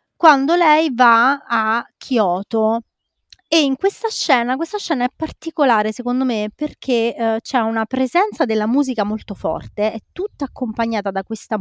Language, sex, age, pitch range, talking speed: Italian, female, 20-39, 195-250 Hz, 150 wpm